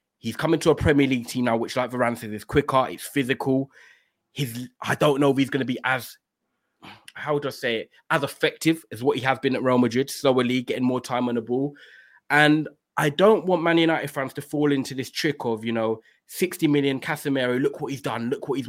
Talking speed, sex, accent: 240 wpm, male, British